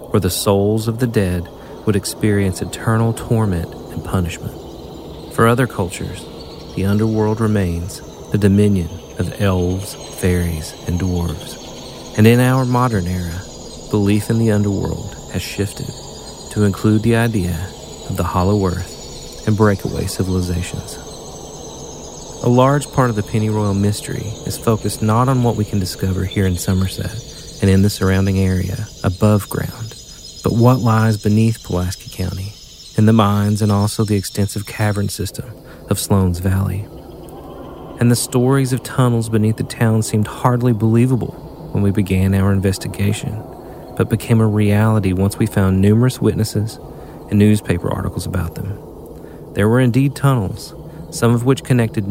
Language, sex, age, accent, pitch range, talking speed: English, male, 40-59, American, 95-115 Hz, 145 wpm